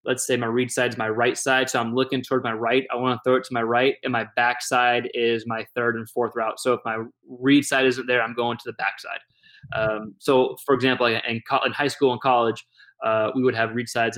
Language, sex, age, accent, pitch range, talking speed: English, male, 20-39, American, 120-130 Hz, 255 wpm